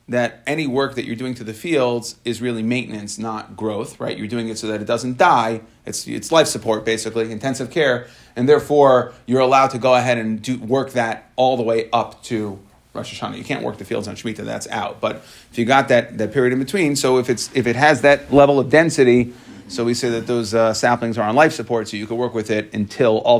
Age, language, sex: 30-49, English, male